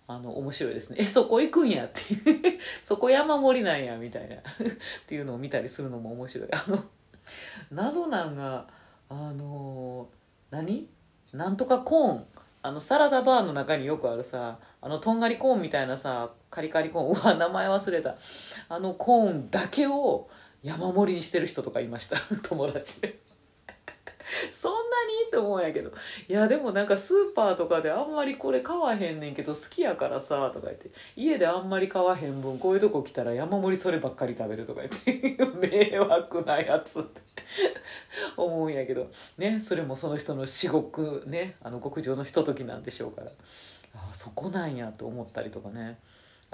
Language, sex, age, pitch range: Japanese, female, 40-59, 130-210 Hz